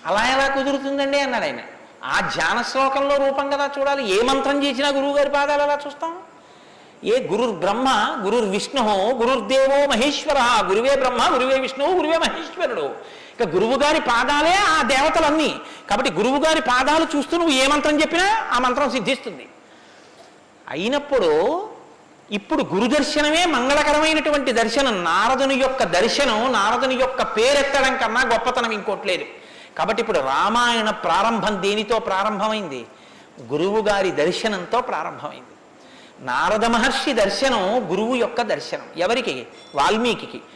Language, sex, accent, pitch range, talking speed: Telugu, male, native, 240-295 Hz, 120 wpm